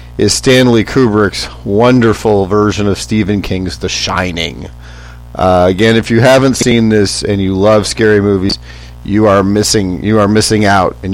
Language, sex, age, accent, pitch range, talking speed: English, male, 40-59, American, 90-115 Hz, 160 wpm